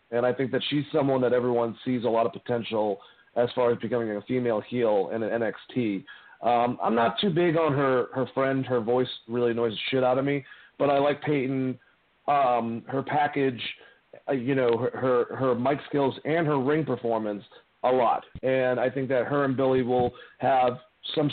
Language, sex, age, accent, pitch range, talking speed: English, male, 40-59, American, 120-140 Hz, 205 wpm